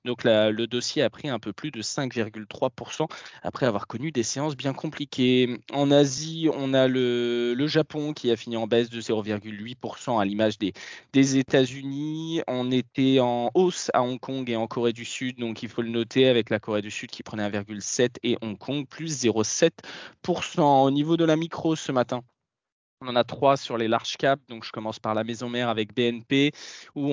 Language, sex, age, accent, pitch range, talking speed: French, male, 20-39, French, 115-140 Hz, 205 wpm